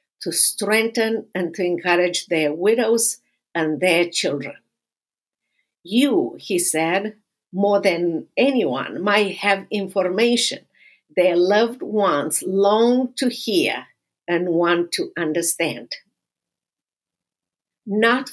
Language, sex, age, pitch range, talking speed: English, female, 50-69, 175-220 Hz, 100 wpm